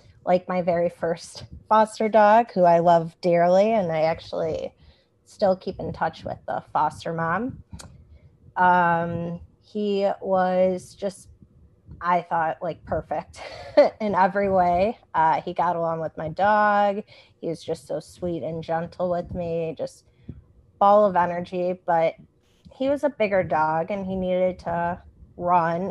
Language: English